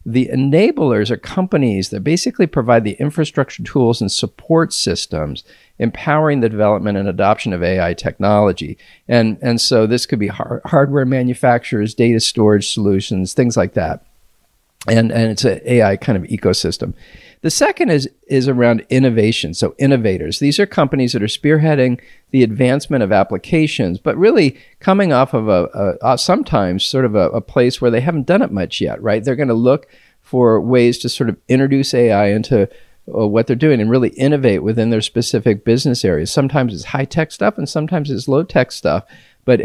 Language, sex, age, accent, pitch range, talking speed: English, male, 50-69, American, 105-135 Hz, 180 wpm